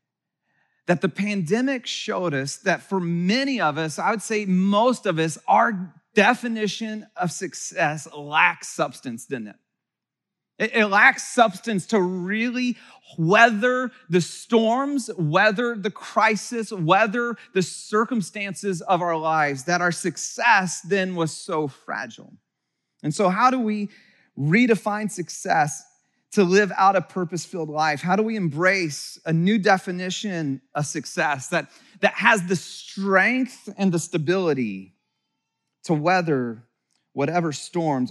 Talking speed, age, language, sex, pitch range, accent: 130 wpm, 30-49, English, male, 165-220 Hz, American